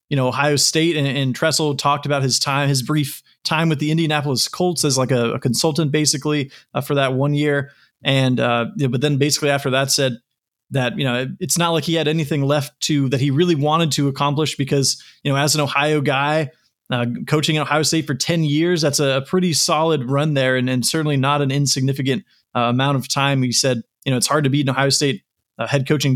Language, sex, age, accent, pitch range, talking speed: English, male, 30-49, American, 135-155 Hz, 235 wpm